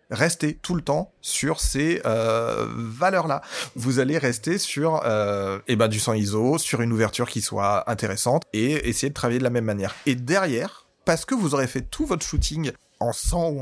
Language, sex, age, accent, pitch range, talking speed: French, male, 30-49, French, 120-165 Hz, 205 wpm